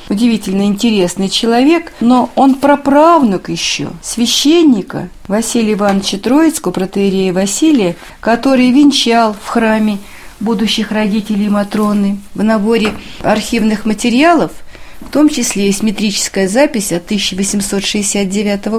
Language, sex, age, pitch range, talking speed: Russian, female, 40-59, 200-250 Hz, 100 wpm